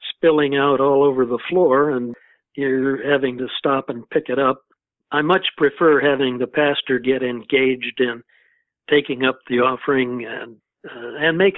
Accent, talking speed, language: American, 165 wpm, English